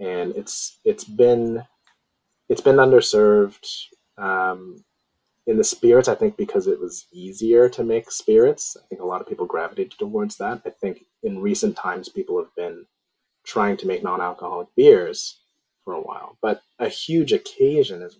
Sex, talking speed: male, 165 wpm